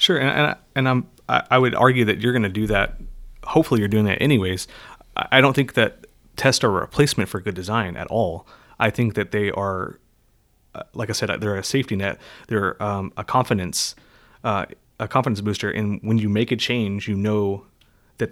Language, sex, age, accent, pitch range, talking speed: English, male, 30-49, American, 105-120 Hz, 205 wpm